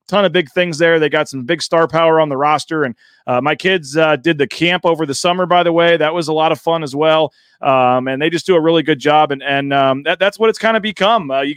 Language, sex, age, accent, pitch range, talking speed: English, male, 30-49, American, 150-180 Hz, 285 wpm